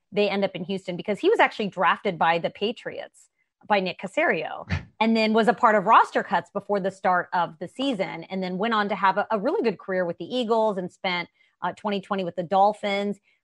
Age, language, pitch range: 30-49, English, 180-220 Hz